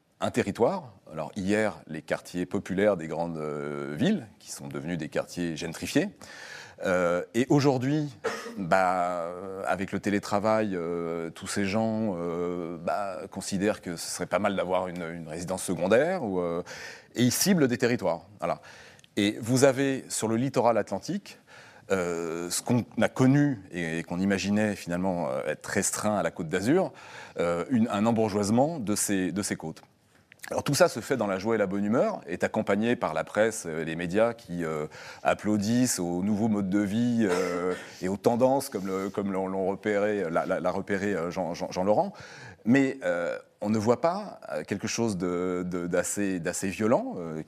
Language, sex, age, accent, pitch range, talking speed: French, male, 30-49, French, 90-115 Hz, 170 wpm